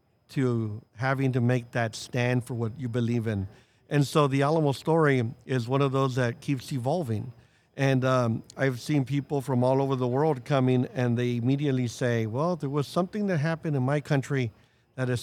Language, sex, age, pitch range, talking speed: English, male, 50-69, 120-145 Hz, 195 wpm